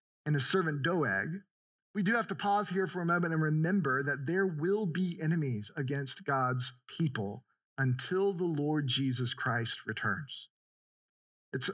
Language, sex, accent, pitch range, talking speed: English, male, American, 150-205 Hz, 155 wpm